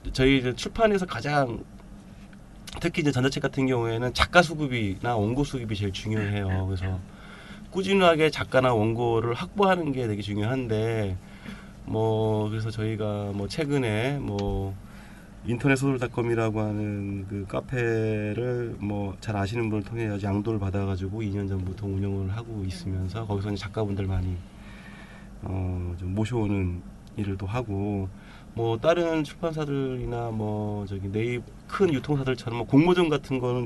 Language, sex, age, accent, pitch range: Korean, male, 20-39, native, 100-130 Hz